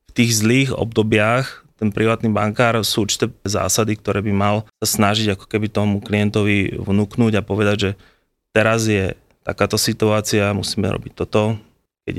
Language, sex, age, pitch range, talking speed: Slovak, male, 20-39, 105-115 Hz, 145 wpm